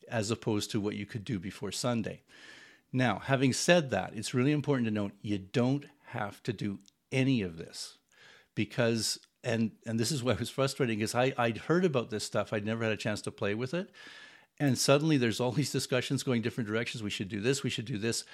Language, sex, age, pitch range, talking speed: English, male, 50-69, 105-135 Hz, 225 wpm